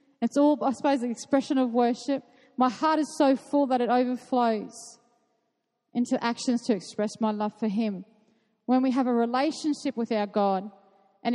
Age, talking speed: 40-59, 175 wpm